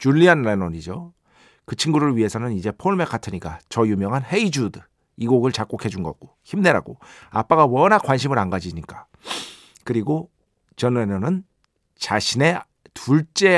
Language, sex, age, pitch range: Korean, male, 40-59, 105-150 Hz